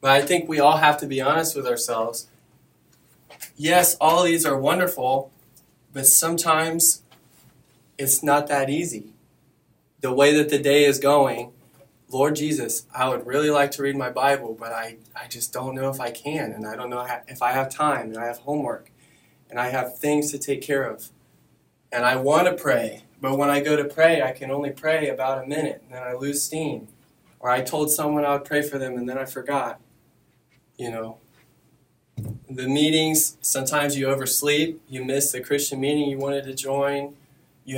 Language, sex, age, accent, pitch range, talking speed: English, male, 20-39, American, 130-150 Hz, 190 wpm